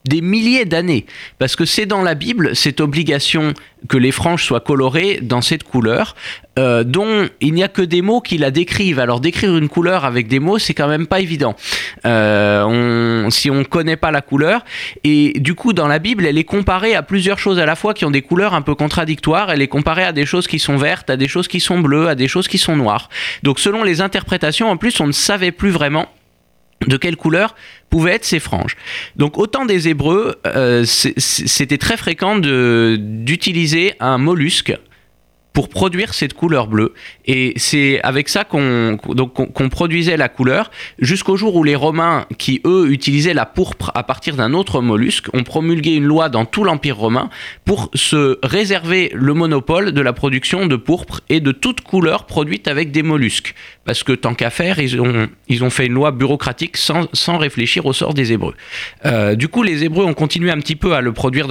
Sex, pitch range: male, 130-175 Hz